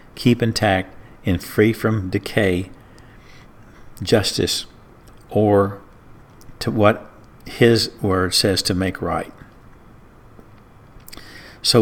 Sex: male